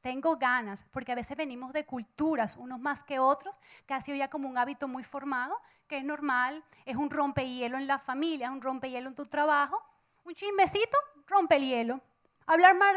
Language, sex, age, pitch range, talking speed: English, female, 30-49, 235-300 Hz, 195 wpm